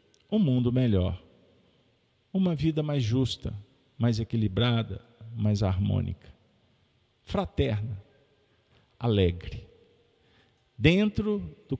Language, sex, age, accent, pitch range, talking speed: Portuguese, male, 50-69, Brazilian, 100-135 Hz, 75 wpm